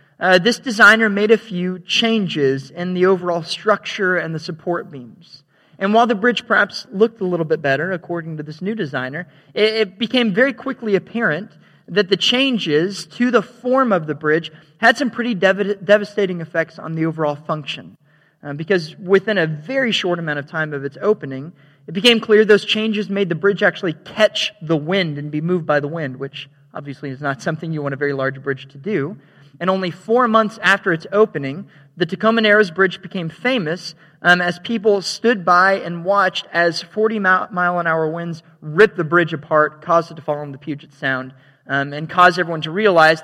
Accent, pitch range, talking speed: American, 150-200 Hz, 190 wpm